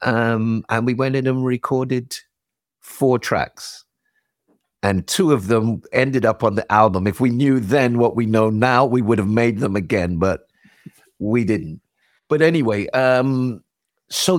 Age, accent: 50-69, British